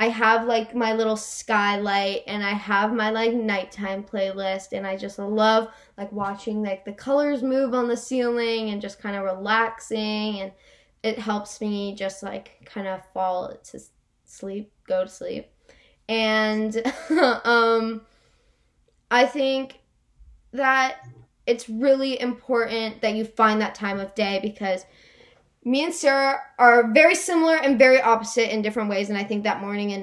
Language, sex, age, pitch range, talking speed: English, female, 10-29, 195-235 Hz, 160 wpm